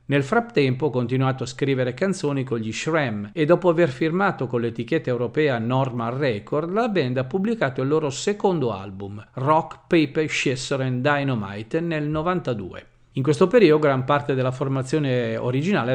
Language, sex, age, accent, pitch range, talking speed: Italian, male, 50-69, native, 125-155 Hz, 160 wpm